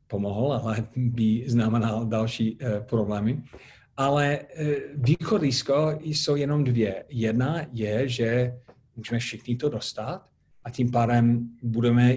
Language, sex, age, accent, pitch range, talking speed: Czech, male, 40-59, native, 110-130 Hz, 120 wpm